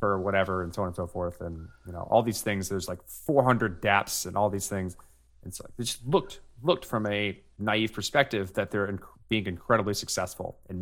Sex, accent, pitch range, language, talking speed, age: male, American, 90-115 Hz, English, 205 wpm, 30-49